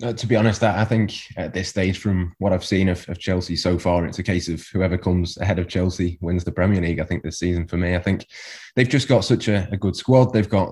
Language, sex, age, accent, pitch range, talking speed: English, male, 20-39, British, 85-100 Hz, 275 wpm